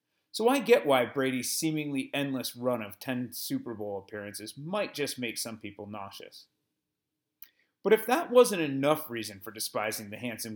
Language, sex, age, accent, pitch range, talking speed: English, male, 30-49, American, 110-160 Hz, 165 wpm